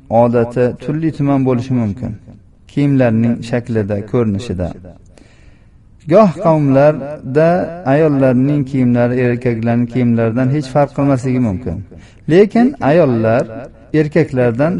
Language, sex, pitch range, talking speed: Russian, male, 115-140 Hz, 120 wpm